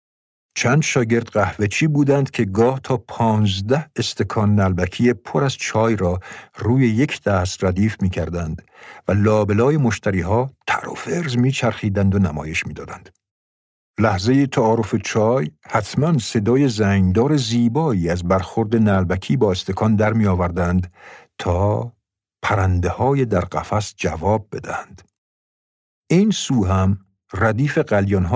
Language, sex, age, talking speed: Persian, male, 50-69, 115 wpm